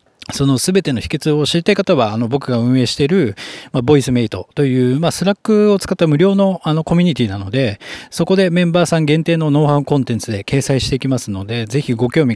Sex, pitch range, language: male, 120-185 Hz, Japanese